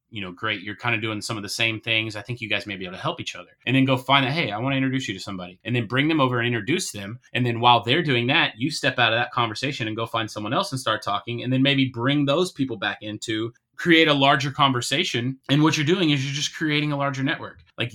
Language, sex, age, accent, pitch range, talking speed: English, male, 20-39, American, 110-135 Hz, 295 wpm